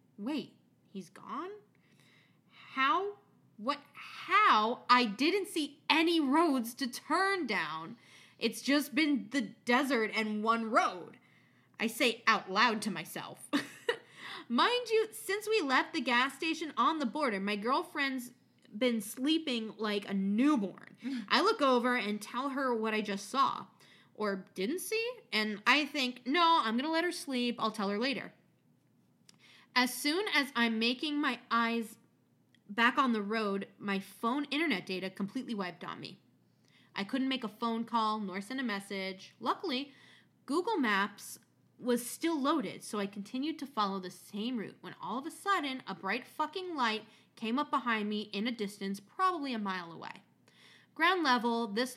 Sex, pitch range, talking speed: female, 210-290 Hz, 160 wpm